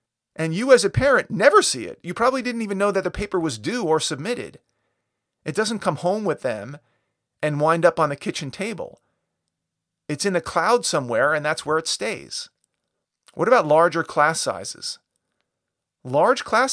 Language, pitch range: English, 140-185 Hz